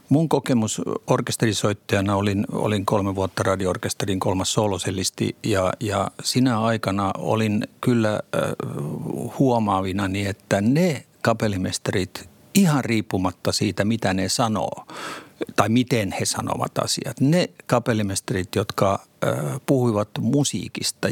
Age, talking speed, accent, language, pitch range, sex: 50-69, 100 wpm, native, Finnish, 100-125 Hz, male